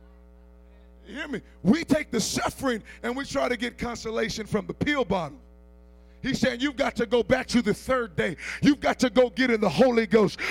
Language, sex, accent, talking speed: English, male, American, 210 wpm